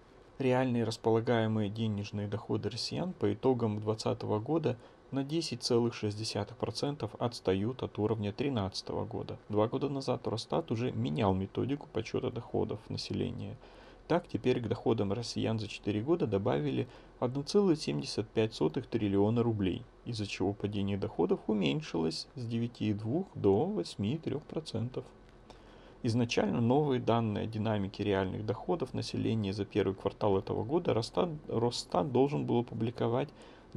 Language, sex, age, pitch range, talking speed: Russian, male, 30-49, 105-125 Hz, 115 wpm